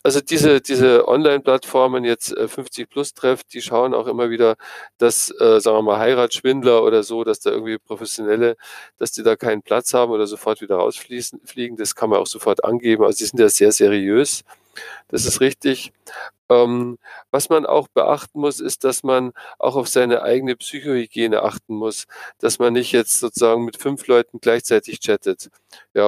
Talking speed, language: 175 wpm, German